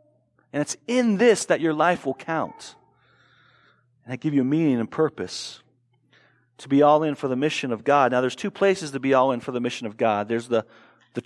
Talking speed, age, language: 220 wpm, 40-59, English